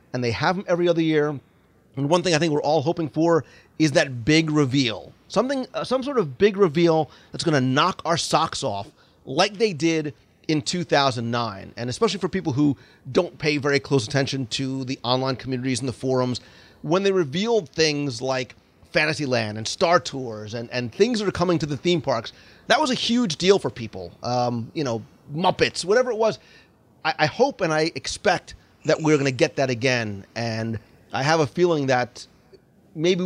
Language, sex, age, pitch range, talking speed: English, male, 30-49, 120-175 Hz, 195 wpm